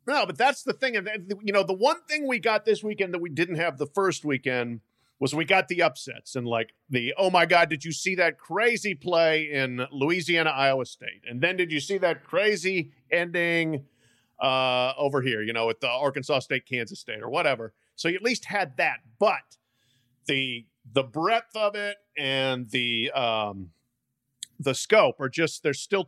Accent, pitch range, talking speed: American, 135-205 Hz, 195 wpm